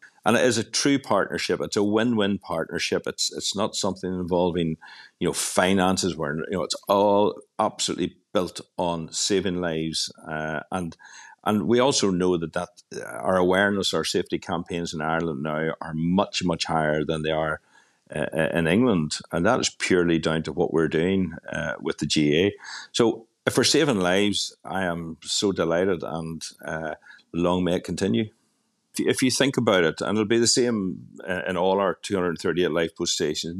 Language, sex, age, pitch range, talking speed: English, male, 50-69, 80-100 Hz, 180 wpm